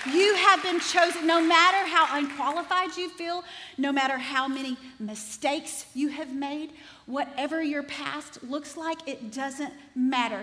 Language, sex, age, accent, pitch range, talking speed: English, female, 40-59, American, 220-285 Hz, 150 wpm